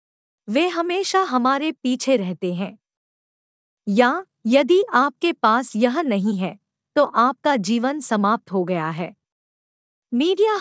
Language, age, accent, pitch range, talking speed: Hindi, 50-69, native, 205-295 Hz, 120 wpm